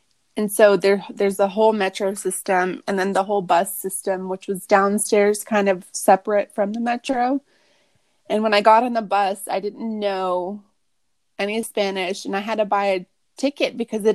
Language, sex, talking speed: English, female, 190 wpm